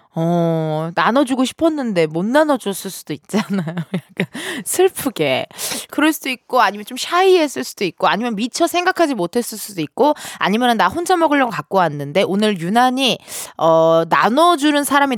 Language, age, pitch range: Korean, 20-39, 195-310 Hz